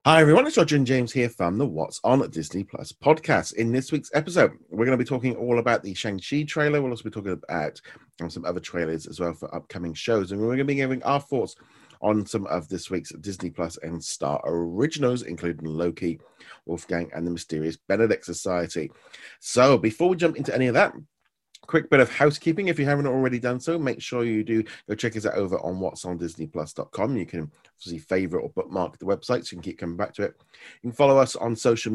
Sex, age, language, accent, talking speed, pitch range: male, 30-49, English, British, 220 wpm, 95-135 Hz